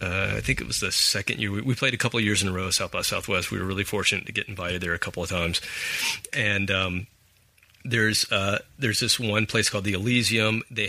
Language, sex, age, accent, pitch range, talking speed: English, male, 30-49, American, 90-110 Hz, 255 wpm